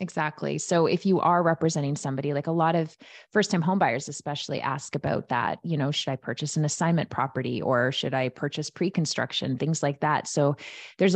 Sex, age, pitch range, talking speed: female, 20-39, 140-165 Hz, 190 wpm